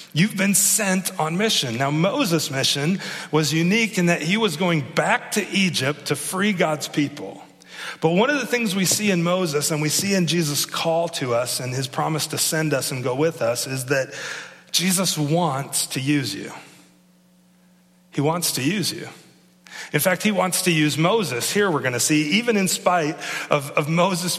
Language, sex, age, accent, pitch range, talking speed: English, male, 40-59, American, 150-195 Hz, 195 wpm